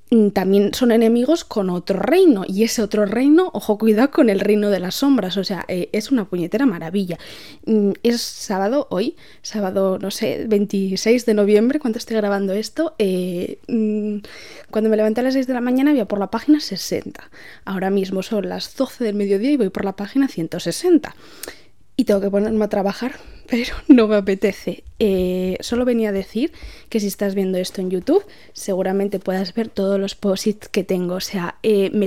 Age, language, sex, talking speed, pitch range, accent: 20-39, Spanish, female, 190 wpm, 195-235 Hz, Spanish